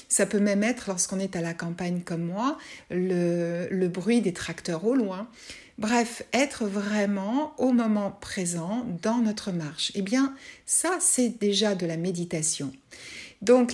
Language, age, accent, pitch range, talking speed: French, 60-79, French, 185-245 Hz, 155 wpm